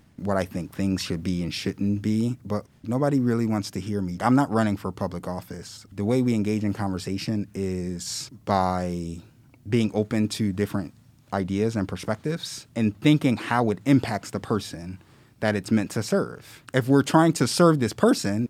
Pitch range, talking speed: 100-125 Hz, 180 wpm